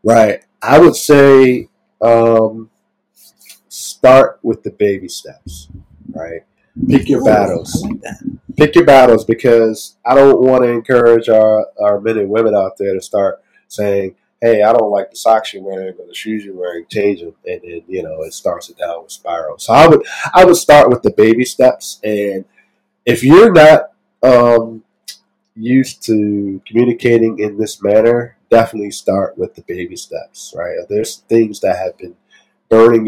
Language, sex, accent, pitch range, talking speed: English, male, American, 100-130 Hz, 165 wpm